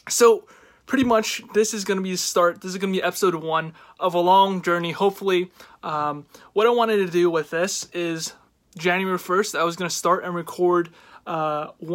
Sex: male